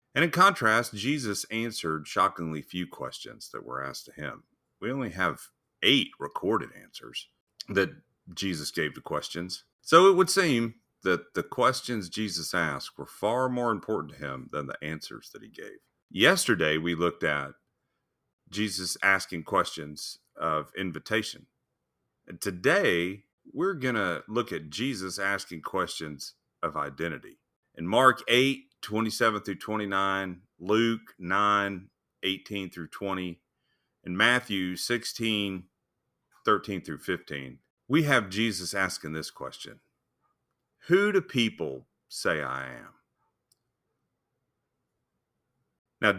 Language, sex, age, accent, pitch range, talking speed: English, male, 40-59, American, 90-120 Hz, 125 wpm